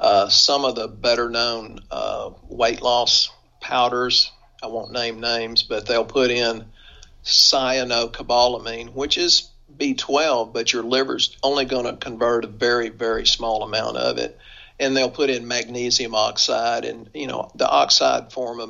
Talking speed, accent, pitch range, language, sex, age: 155 wpm, American, 115-130 Hz, English, male, 50-69